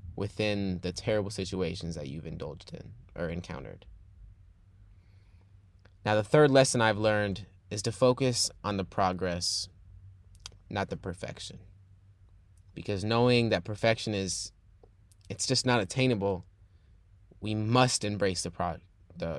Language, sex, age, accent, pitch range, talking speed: English, male, 20-39, American, 90-110 Hz, 125 wpm